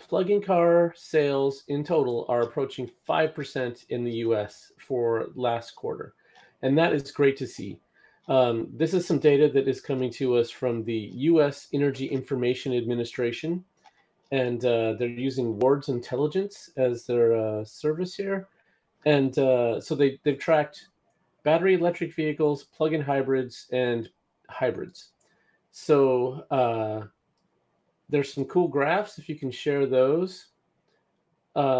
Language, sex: English, male